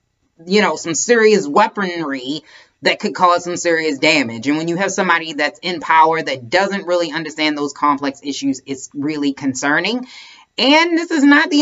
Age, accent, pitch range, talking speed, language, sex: 30-49, American, 145-210 Hz, 175 wpm, English, female